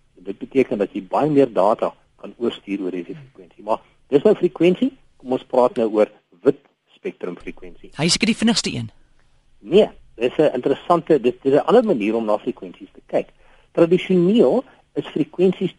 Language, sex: Dutch, male